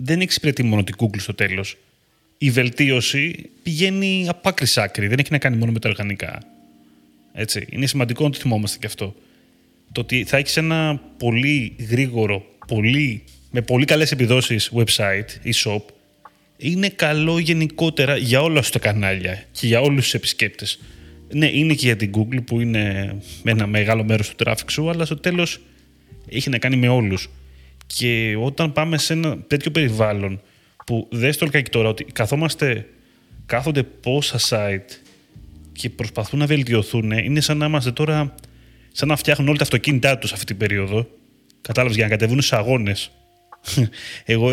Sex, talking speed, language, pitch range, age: male, 165 wpm, Greek, 110-145 Hz, 30-49